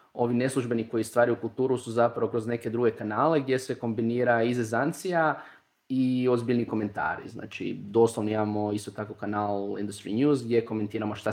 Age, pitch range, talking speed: 20-39, 110-130 Hz, 155 wpm